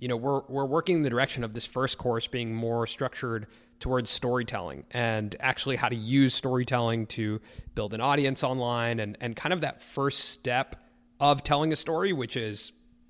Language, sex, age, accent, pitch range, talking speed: English, male, 30-49, American, 115-150 Hz, 190 wpm